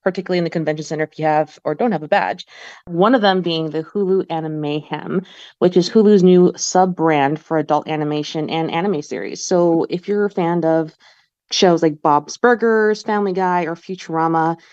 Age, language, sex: 20-39, English, female